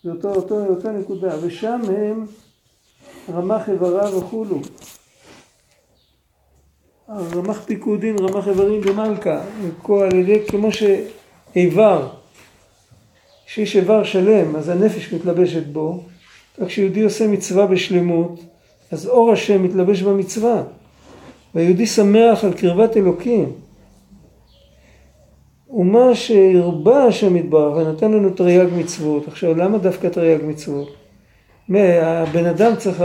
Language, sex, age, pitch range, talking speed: Hebrew, male, 50-69, 165-205 Hz, 105 wpm